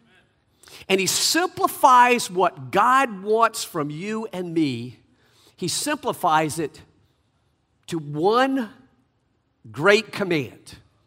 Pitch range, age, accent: 125-195 Hz, 50-69, American